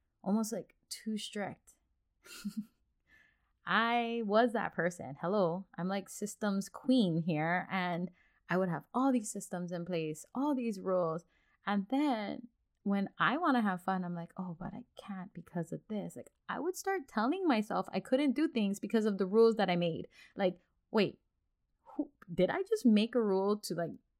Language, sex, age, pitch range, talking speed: English, female, 20-39, 170-225 Hz, 175 wpm